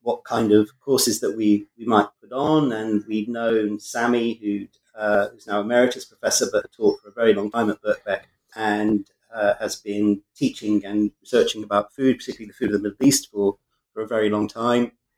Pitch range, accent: 105-125 Hz, British